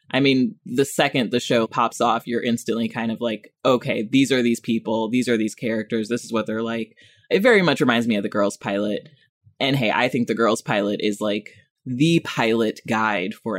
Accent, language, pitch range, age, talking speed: American, English, 115-175 Hz, 20-39, 215 wpm